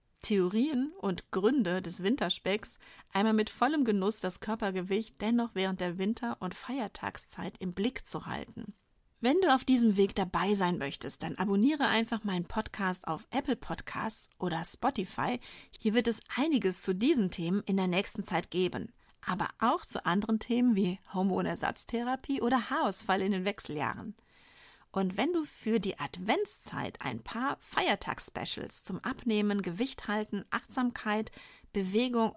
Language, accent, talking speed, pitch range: German, German, 145 wpm, 185-235 Hz